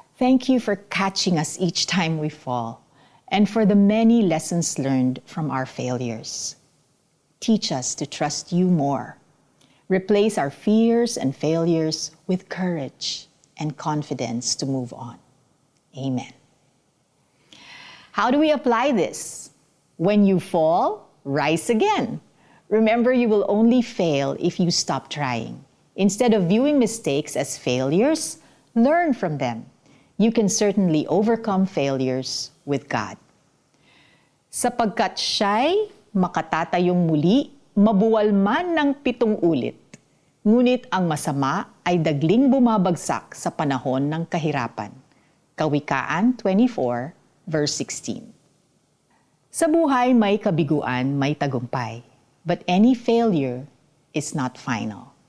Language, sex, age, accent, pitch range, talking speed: Filipino, female, 50-69, native, 140-215 Hz, 115 wpm